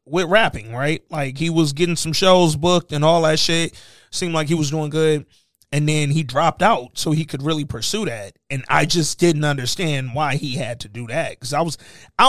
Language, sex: English, male